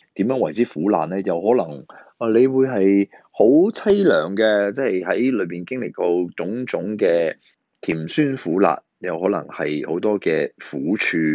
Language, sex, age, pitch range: Chinese, male, 20-39, 80-125 Hz